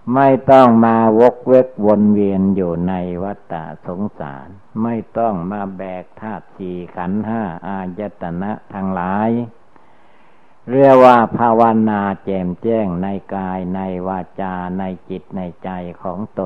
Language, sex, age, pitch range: Thai, male, 60-79, 95-110 Hz